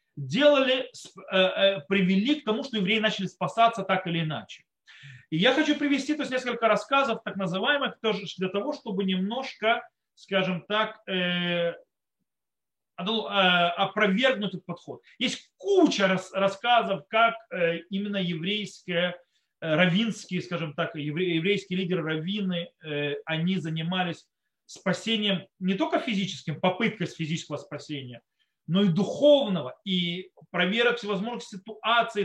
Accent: native